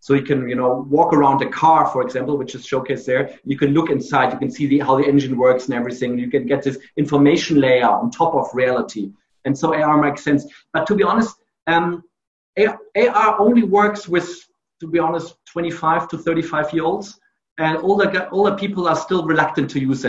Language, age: English, 40-59